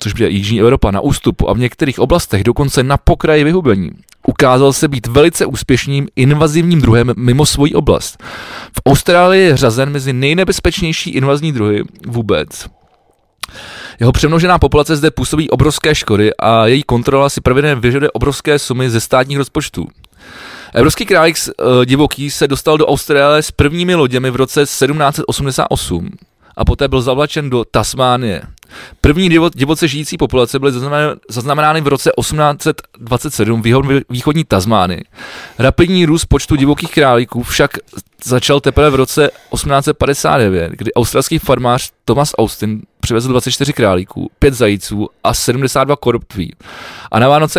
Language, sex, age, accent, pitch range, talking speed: Czech, male, 20-39, native, 120-150 Hz, 140 wpm